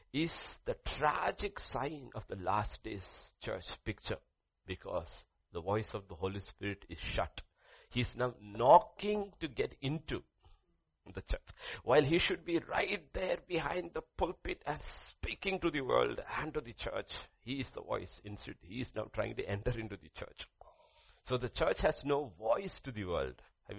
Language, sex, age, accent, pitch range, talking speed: English, male, 50-69, Indian, 90-135 Hz, 175 wpm